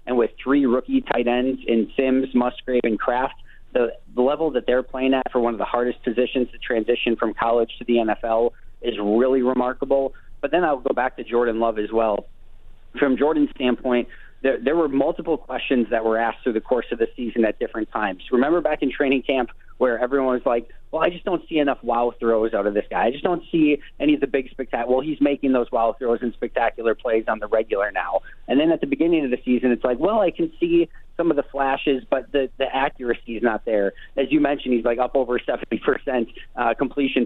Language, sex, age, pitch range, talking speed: English, male, 30-49, 115-140 Hz, 225 wpm